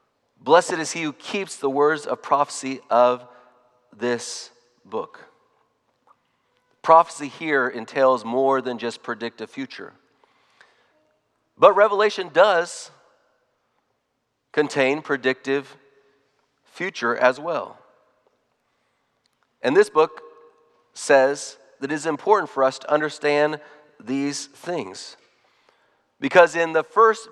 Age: 40-59